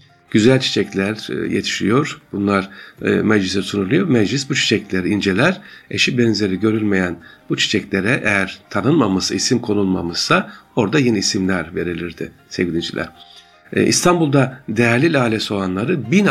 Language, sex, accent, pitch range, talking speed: Turkish, male, native, 95-120 Hz, 110 wpm